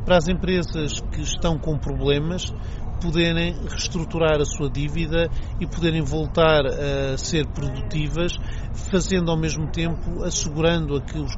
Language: Portuguese